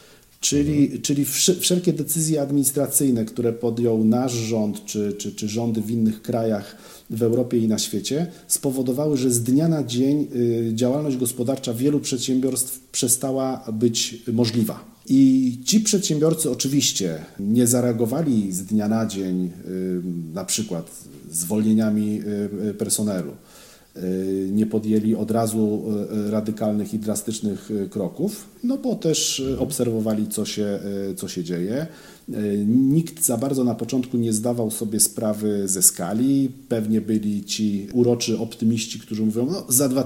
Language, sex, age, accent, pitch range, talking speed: Polish, male, 40-59, native, 105-135 Hz, 125 wpm